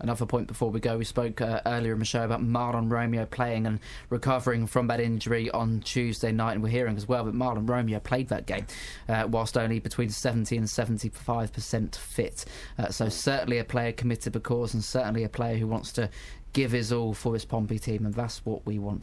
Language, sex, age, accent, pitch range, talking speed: English, male, 20-39, British, 115-135 Hz, 220 wpm